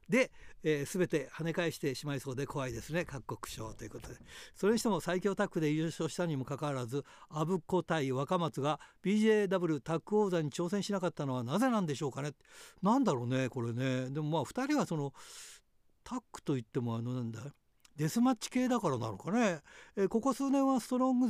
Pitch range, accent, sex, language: 145-200 Hz, native, male, Japanese